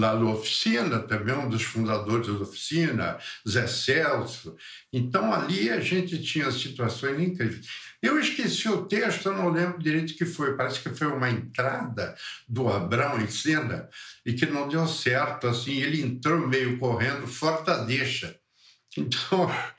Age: 60-79